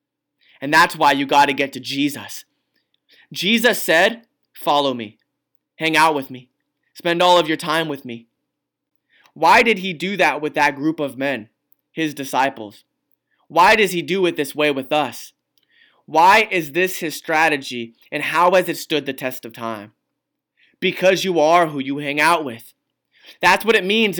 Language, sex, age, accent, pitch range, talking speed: English, male, 20-39, American, 135-180 Hz, 175 wpm